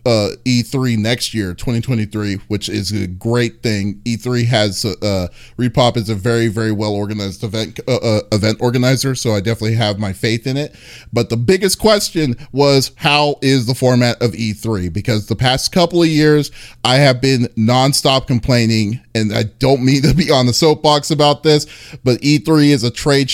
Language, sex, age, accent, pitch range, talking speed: English, male, 30-49, American, 110-125 Hz, 185 wpm